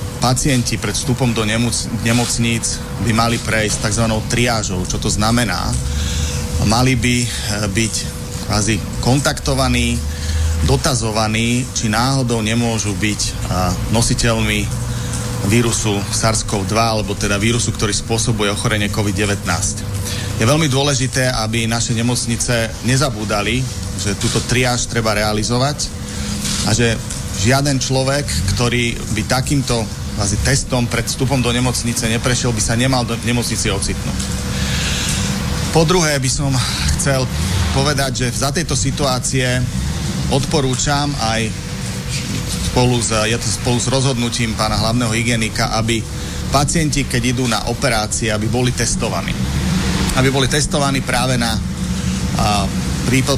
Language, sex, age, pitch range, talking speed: Slovak, male, 30-49, 105-125 Hz, 110 wpm